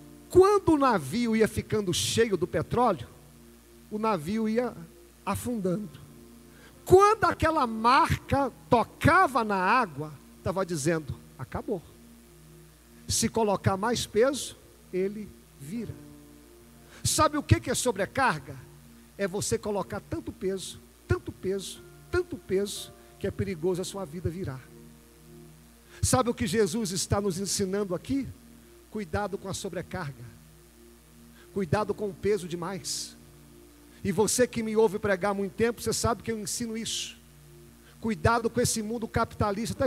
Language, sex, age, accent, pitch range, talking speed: Portuguese, male, 50-69, Brazilian, 150-230 Hz, 130 wpm